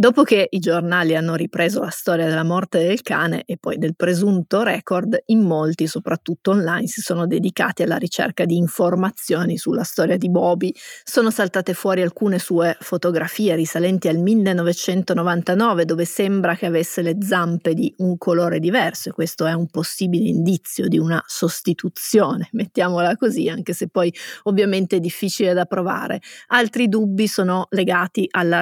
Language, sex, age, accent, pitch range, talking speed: Italian, female, 30-49, native, 170-200 Hz, 155 wpm